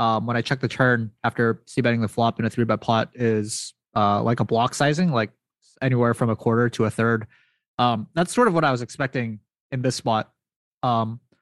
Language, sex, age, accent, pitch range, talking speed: English, male, 20-39, American, 115-150 Hz, 210 wpm